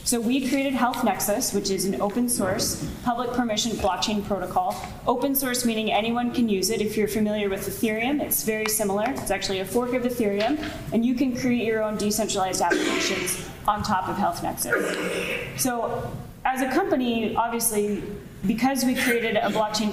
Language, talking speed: English, 175 wpm